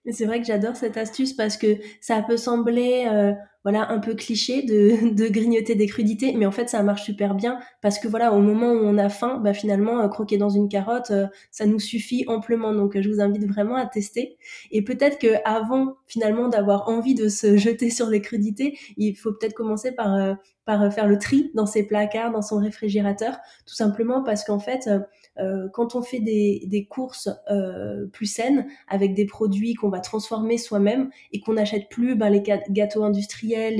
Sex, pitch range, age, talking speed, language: female, 205-230 Hz, 20-39, 200 wpm, French